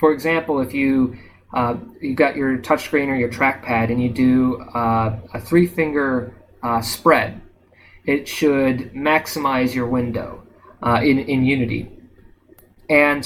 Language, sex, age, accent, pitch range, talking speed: English, male, 30-49, American, 120-155 Hz, 140 wpm